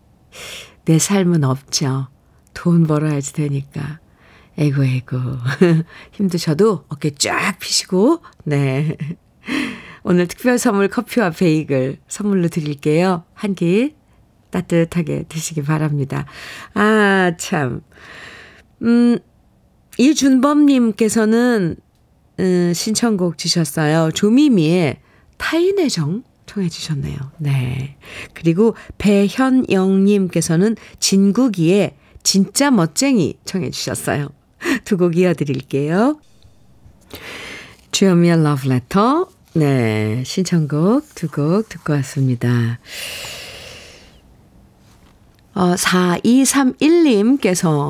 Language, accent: Korean, native